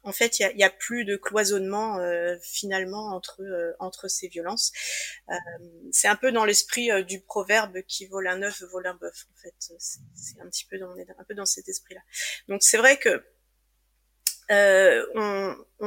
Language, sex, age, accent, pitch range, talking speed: French, female, 30-49, French, 190-235 Hz, 195 wpm